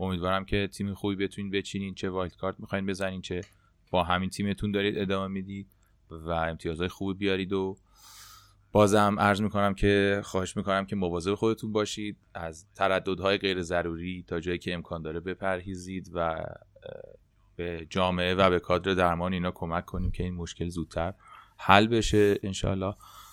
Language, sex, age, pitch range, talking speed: Persian, male, 30-49, 90-100 Hz, 155 wpm